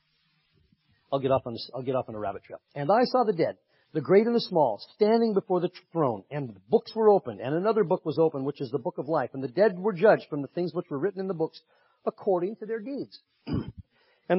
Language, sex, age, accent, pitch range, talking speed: English, male, 50-69, American, 130-180 Hz, 255 wpm